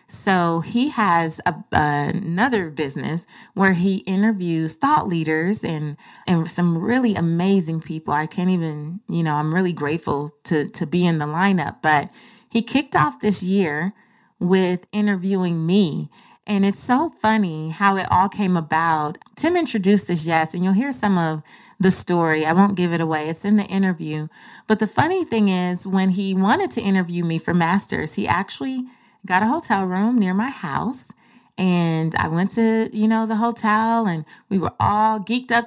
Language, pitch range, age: English, 170-220 Hz, 20-39